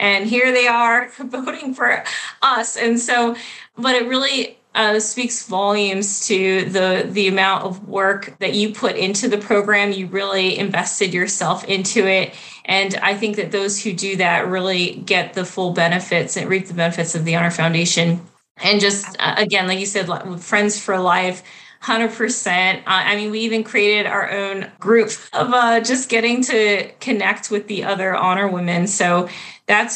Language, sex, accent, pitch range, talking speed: English, female, American, 180-210 Hz, 175 wpm